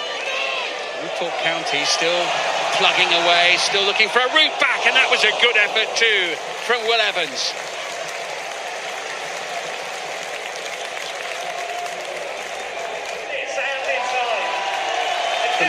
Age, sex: 50-69, male